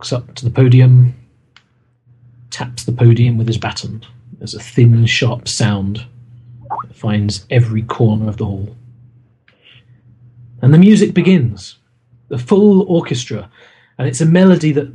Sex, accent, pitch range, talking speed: male, British, 115-130 Hz, 135 wpm